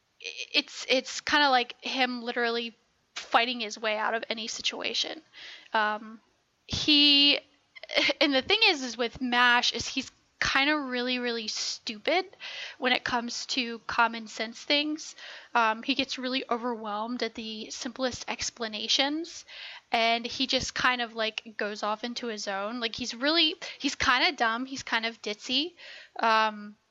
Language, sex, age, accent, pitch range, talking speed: English, female, 10-29, American, 225-270 Hz, 155 wpm